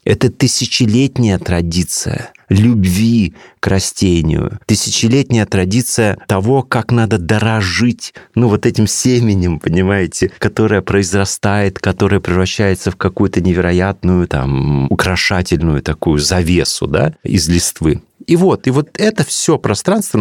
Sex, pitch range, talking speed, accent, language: male, 90-125 Hz, 115 wpm, native, Russian